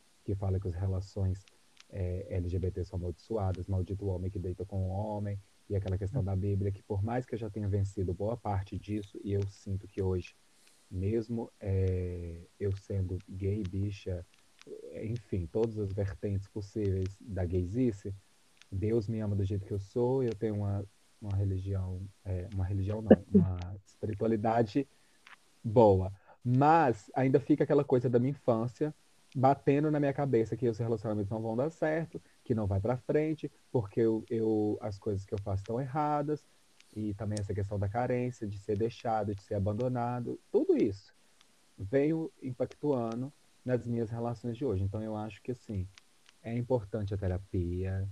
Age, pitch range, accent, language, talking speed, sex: 20-39, 95-120 Hz, Brazilian, Portuguese, 165 wpm, male